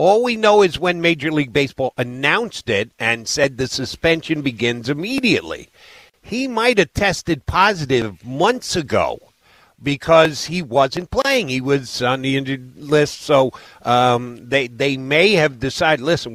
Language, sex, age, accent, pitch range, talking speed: English, male, 50-69, American, 130-170 Hz, 150 wpm